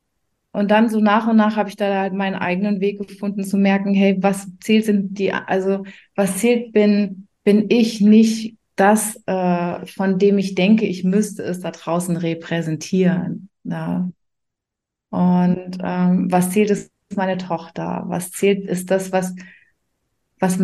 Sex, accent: female, German